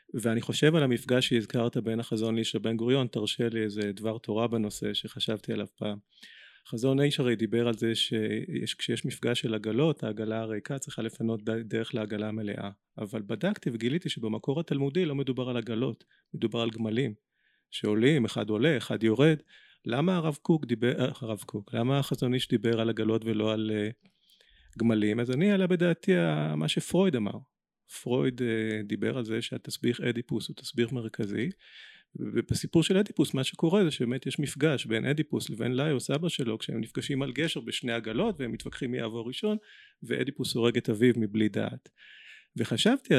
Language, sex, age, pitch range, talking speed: Hebrew, male, 30-49, 110-140 Hz, 160 wpm